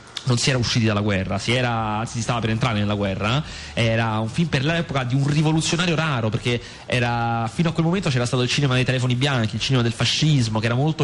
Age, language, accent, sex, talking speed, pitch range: 30-49, Italian, native, male, 240 wpm, 115-150 Hz